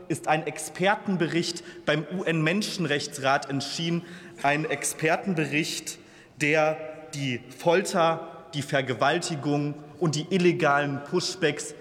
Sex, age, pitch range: male, 30-49, 150-195 Hz